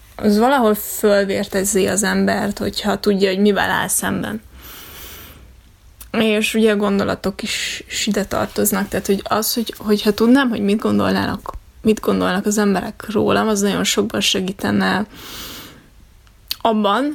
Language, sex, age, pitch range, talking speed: Hungarian, female, 20-39, 205-230 Hz, 130 wpm